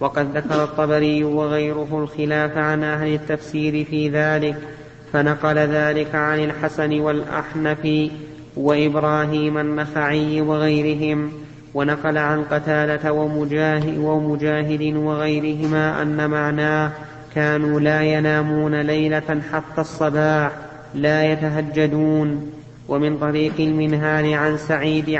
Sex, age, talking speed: male, 30-49, 95 wpm